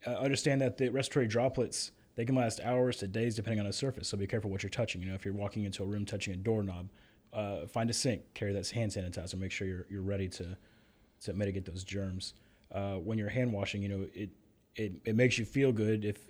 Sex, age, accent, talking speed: male, 30-49, American, 245 wpm